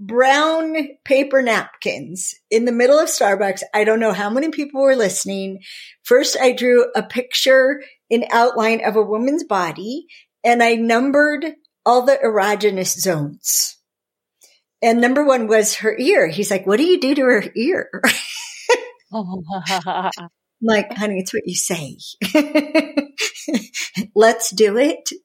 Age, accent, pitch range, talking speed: 50-69, American, 210-310 Hz, 140 wpm